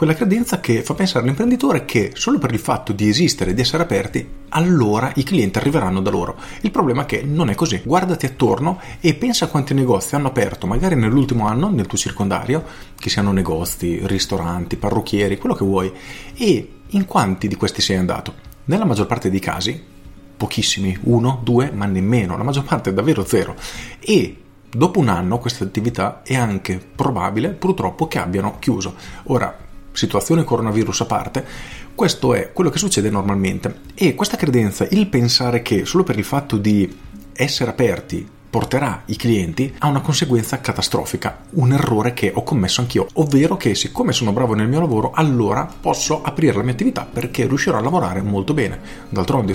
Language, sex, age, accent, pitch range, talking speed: Italian, male, 40-59, native, 100-140 Hz, 175 wpm